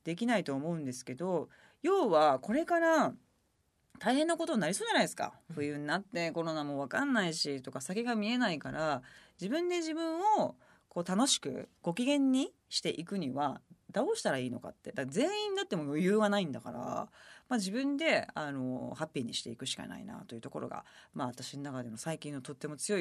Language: Japanese